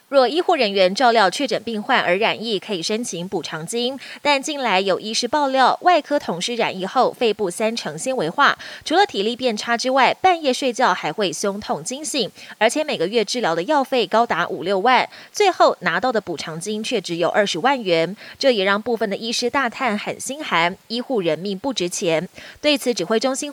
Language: Chinese